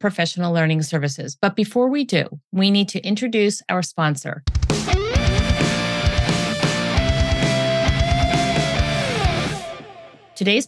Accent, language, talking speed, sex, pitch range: American, English, 80 wpm, female, 165-220 Hz